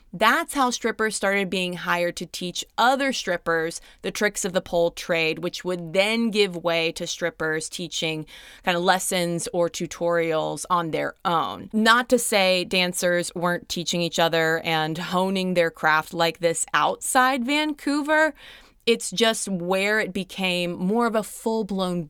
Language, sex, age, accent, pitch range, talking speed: English, female, 20-39, American, 170-215 Hz, 155 wpm